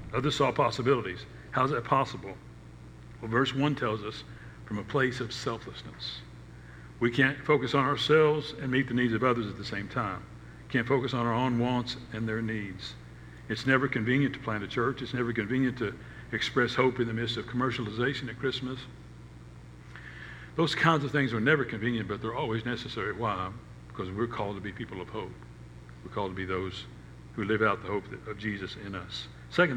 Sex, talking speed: male, 195 wpm